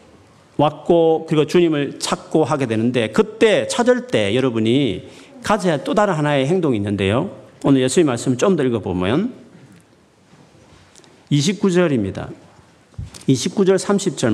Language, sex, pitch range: Korean, male, 110-170 Hz